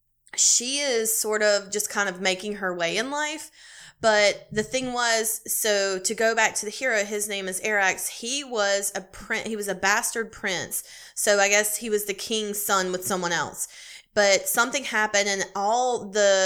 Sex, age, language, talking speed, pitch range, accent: female, 20-39, English, 195 wpm, 185-215 Hz, American